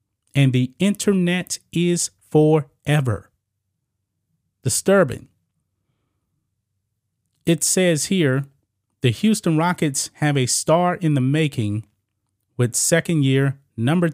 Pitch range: 105-150 Hz